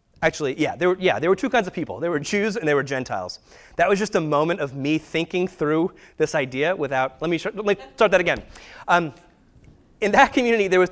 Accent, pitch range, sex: American, 150-200 Hz, male